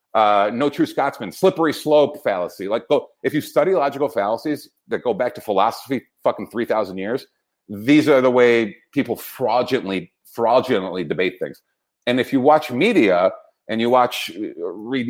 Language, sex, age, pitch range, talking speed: English, male, 40-59, 120-155 Hz, 160 wpm